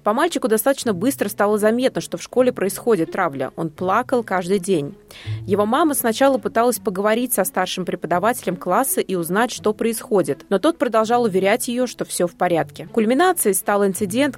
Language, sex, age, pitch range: Russian, female, 20-39, 180-235 Hz